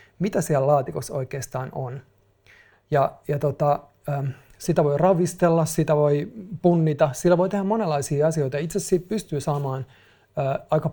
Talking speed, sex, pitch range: 135 wpm, male, 135-170 Hz